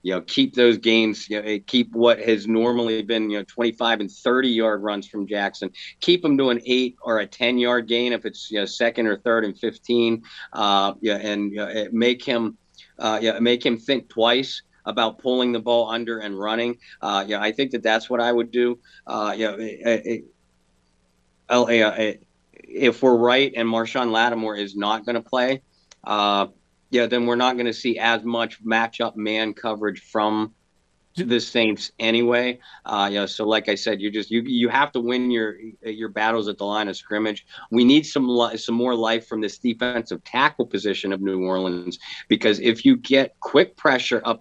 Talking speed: 195 wpm